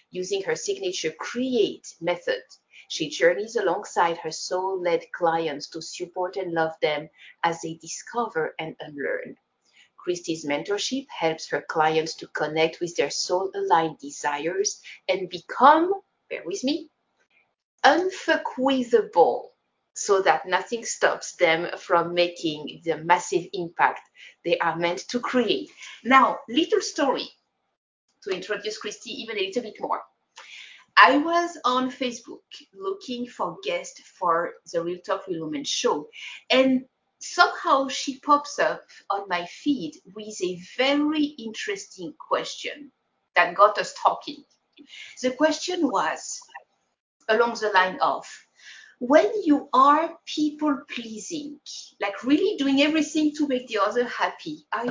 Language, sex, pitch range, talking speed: English, female, 185-310 Hz, 130 wpm